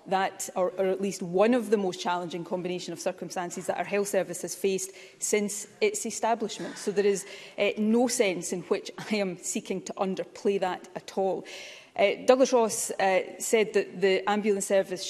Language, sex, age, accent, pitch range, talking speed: English, female, 30-49, British, 180-210 Hz, 185 wpm